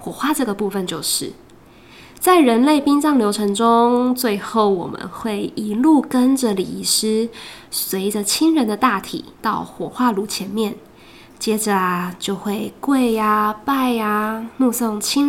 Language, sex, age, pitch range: Chinese, female, 10-29, 205-255 Hz